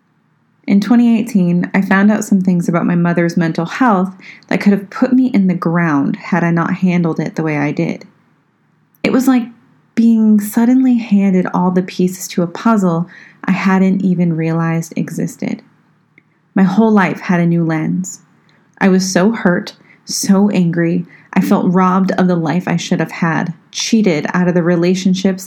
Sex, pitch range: female, 175-205 Hz